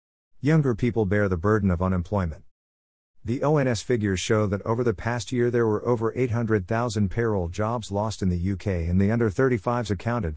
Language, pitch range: English, 90-110 Hz